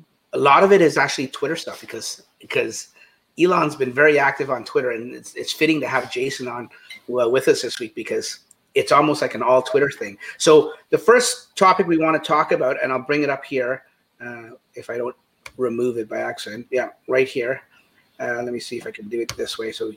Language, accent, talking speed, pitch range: English, American, 230 wpm, 130-200 Hz